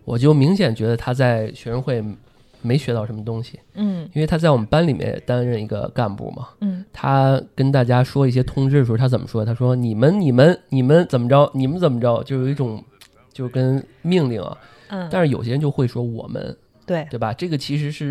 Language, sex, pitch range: Chinese, male, 115-145 Hz